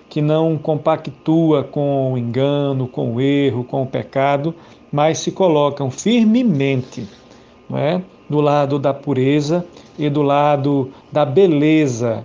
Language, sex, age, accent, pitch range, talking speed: Portuguese, male, 50-69, Brazilian, 130-165 Hz, 120 wpm